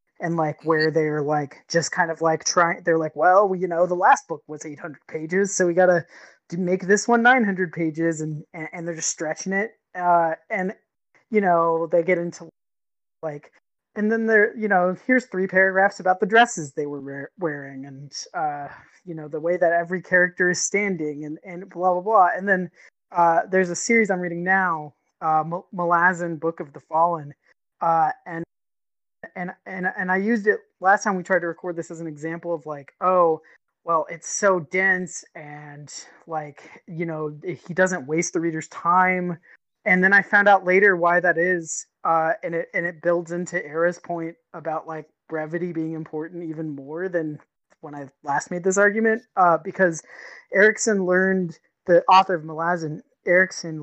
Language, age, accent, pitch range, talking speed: English, 20-39, American, 160-185 Hz, 185 wpm